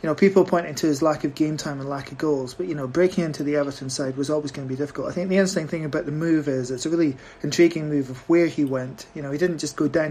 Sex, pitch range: male, 140-165 Hz